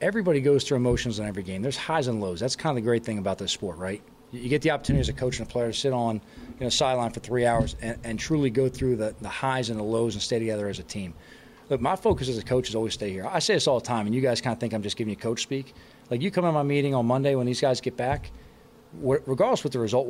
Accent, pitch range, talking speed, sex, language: American, 115-145 Hz, 310 wpm, male, English